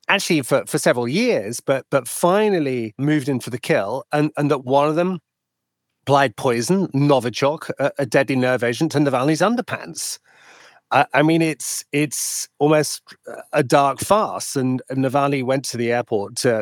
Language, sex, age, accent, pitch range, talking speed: English, male, 30-49, British, 120-150 Hz, 170 wpm